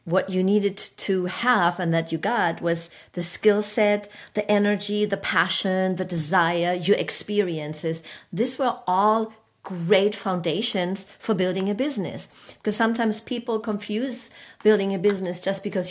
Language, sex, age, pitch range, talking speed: English, female, 40-59, 165-205 Hz, 145 wpm